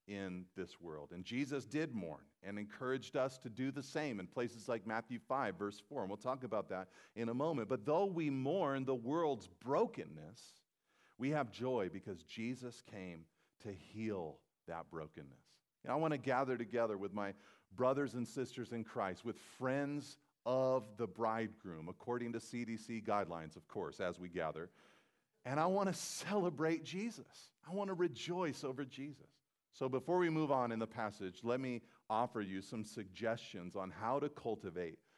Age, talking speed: 40-59, 175 wpm